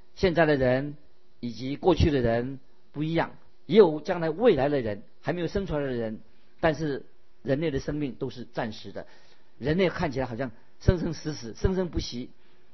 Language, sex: Chinese, male